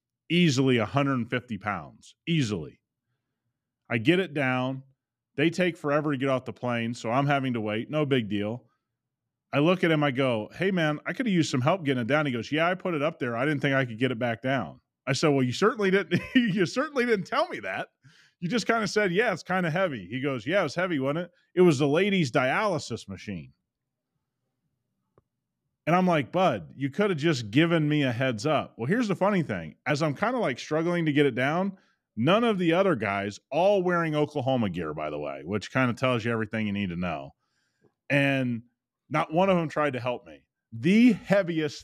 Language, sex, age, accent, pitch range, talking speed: English, male, 30-49, American, 120-170 Hz, 220 wpm